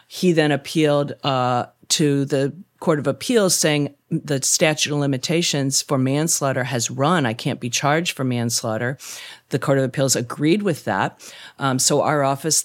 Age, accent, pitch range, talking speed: 40-59, American, 130-160 Hz, 165 wpm